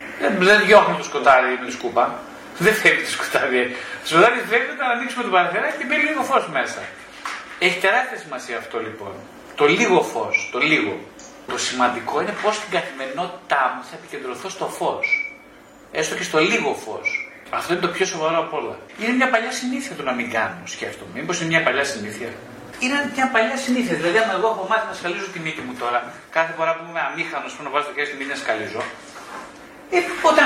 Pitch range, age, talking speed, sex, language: 170-265 Hz, 30-49, 185 wpm, male, Greek